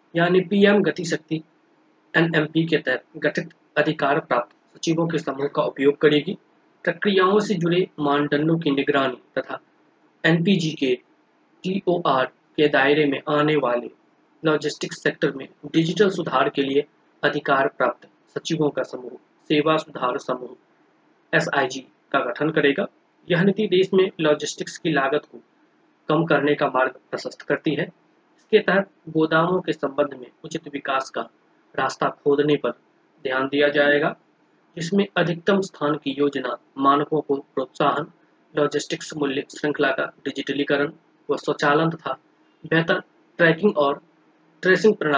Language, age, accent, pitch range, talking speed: Hindi, 20-39, native, 140-165 Hz, 105 wpm